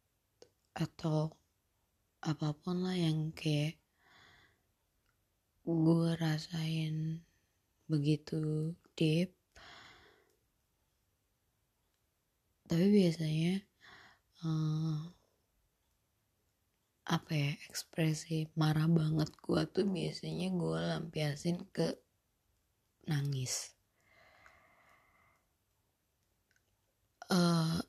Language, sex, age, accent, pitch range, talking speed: Indonesian, female, 20-39, native, 135-165 Hz, 55 wpm